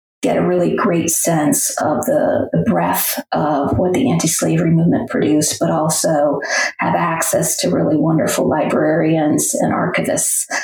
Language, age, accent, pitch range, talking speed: English, 40-59, American, 160-190 Hz, 140 wpm